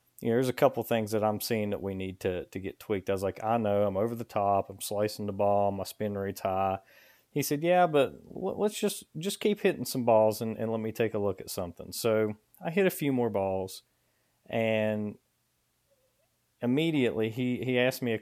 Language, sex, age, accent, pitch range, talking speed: English, male, 30-49, American, 100-125 Hz, 225 wpm